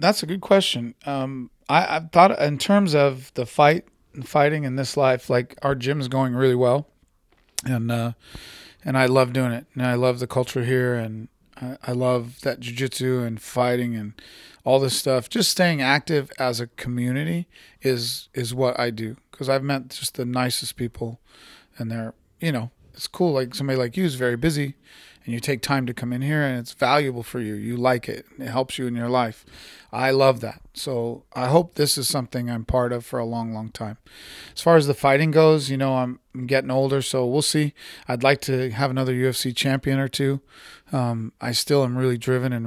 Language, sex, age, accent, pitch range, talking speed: English, male, 40-59, American, 120-140 Hz, 210 wpm